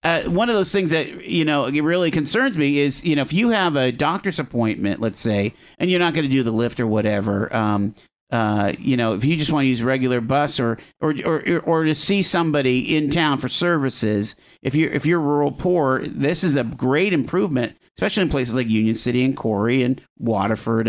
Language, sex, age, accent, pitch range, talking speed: English, male, 50-69, American, 115-150 Hz, 220 wpm